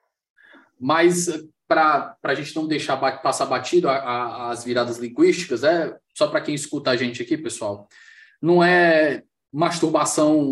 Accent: Brazilian